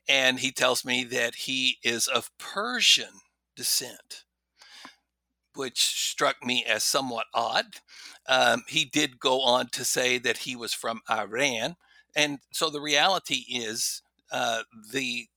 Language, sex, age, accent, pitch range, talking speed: English, male, 60-79, American, 115-140 Hz, 135 wpm